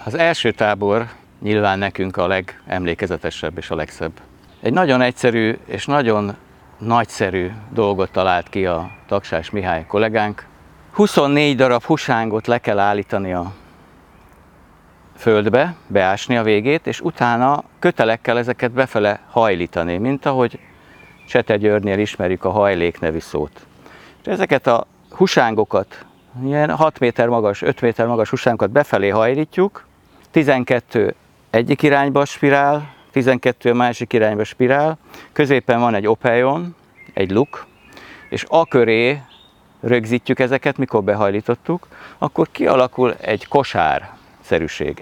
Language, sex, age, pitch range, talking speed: Hungarian, male, 50-69, 100-140 Hz, 115 wpm